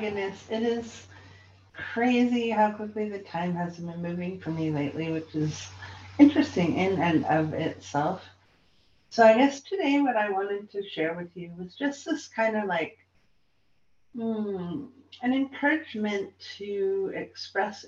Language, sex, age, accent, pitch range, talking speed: English, female, 50-69, American, 170-250 Hz, 140 wpm